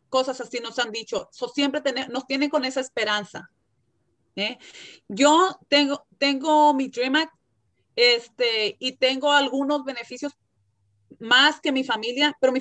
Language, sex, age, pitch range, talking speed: English, female, 30-49, 250-290 Hz, 150 wpm